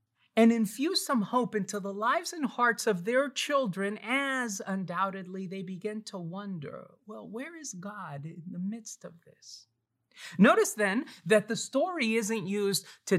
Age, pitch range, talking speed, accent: 30-49, 155-235 Hz, 160 wpm, American